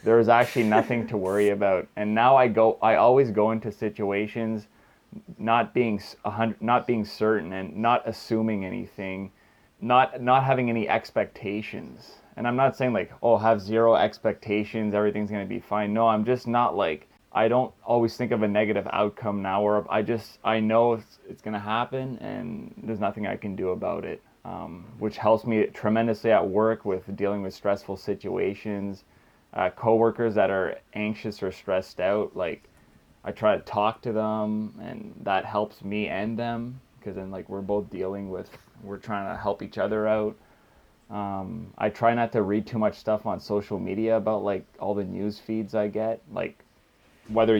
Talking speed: 180 wpm